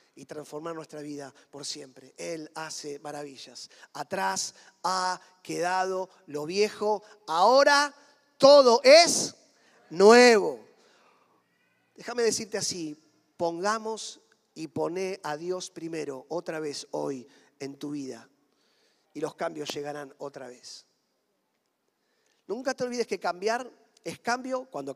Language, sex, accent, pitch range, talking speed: Spanish, male, Argentinian, 150-210 Hz, 115 wpm